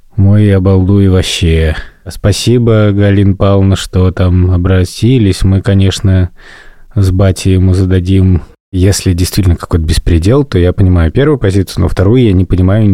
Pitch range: 90-110 Hz